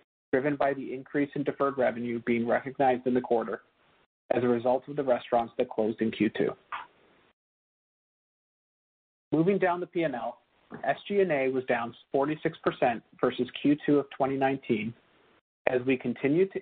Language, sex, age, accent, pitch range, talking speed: English, male, 40-59, American, 120-145 Hz, 135 wpm